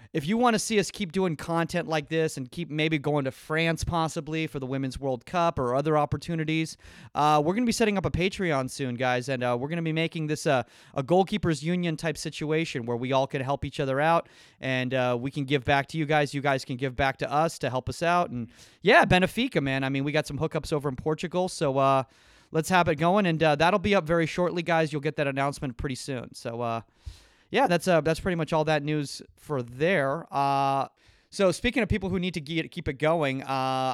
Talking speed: 245 wpm